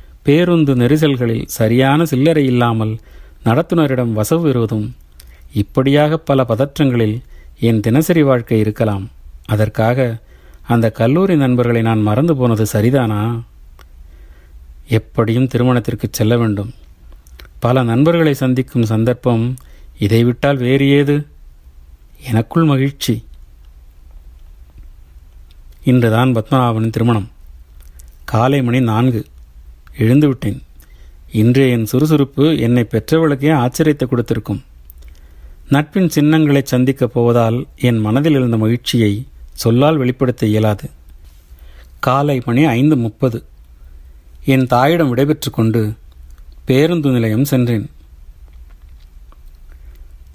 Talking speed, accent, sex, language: 80 wpm, native, male, Tamil